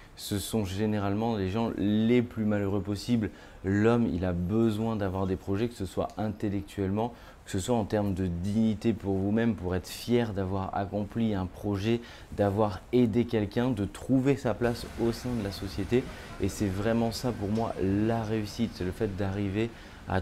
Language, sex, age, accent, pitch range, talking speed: French, male, 30-49, French, 100-115 Hz, 180 wpm